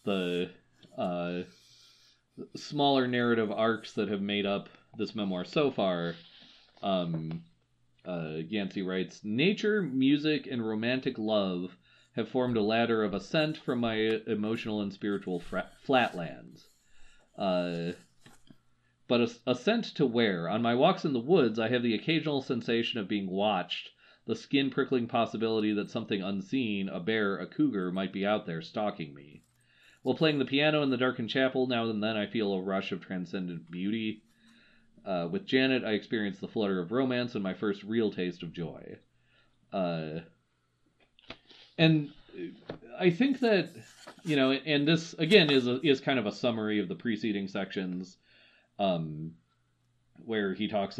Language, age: English, 40-59